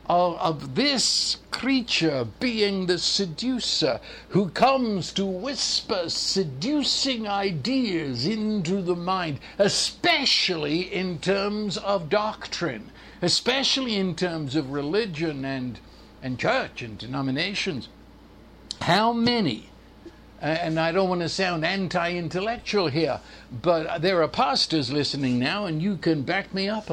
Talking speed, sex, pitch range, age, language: 115 wpm, male, 160-230 Hz, 60-79, English